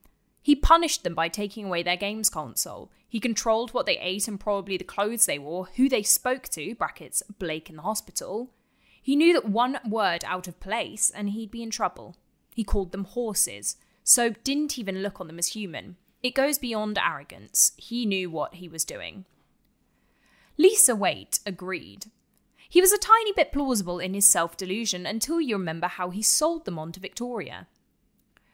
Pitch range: 185-245 Hz